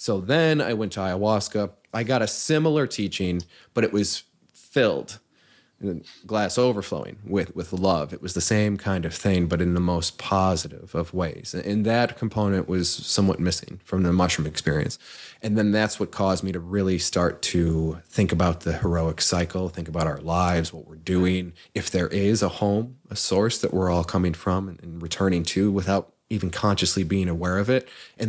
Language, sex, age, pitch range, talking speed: English, male, 20-39, 90-105 Hz, 190 wpm